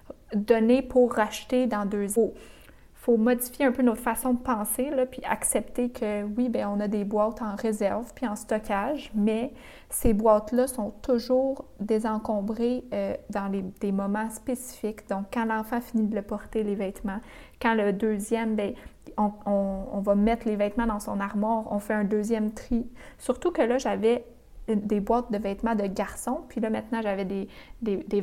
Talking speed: 185 wpm